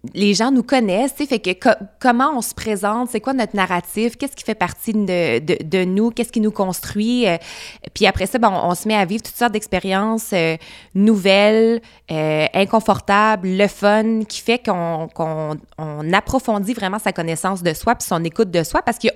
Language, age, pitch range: French, 20-39, 165-215 Hz